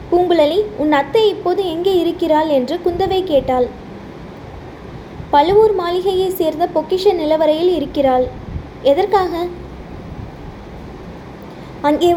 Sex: female